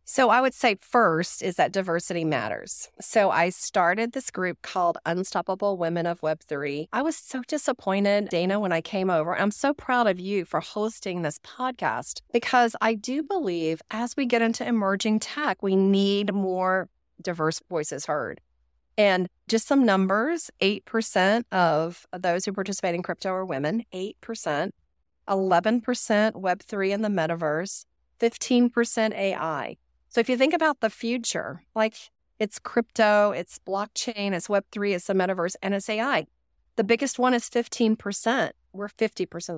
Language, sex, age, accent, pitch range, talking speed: English, female, 40-59, American, 180-230 Hz, 160 wpm